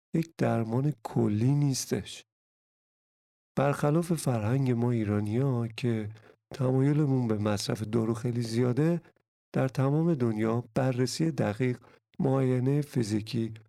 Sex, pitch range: male, 115-140 Hz